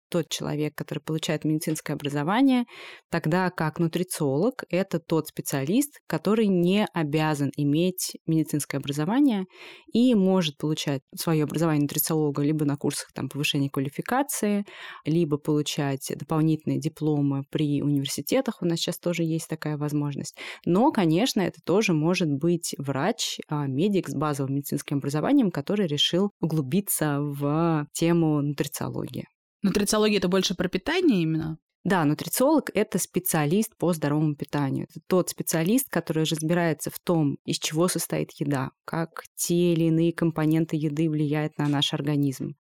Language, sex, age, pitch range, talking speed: Russian, female, 20-39, 150-180 Hz, 130 wpm